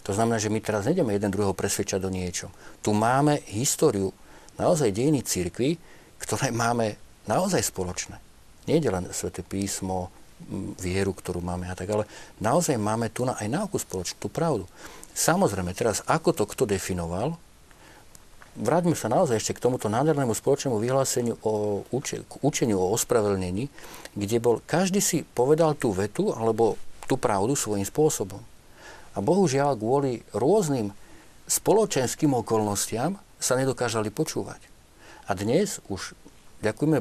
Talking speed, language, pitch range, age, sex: 135 wpm, Slovak, 100-140 Hz, 50-69, male